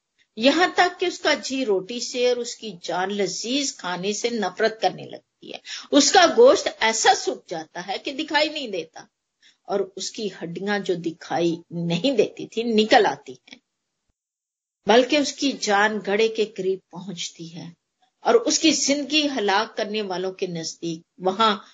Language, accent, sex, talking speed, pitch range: Hindi, native, female, 150 wpm, 185-265 Hz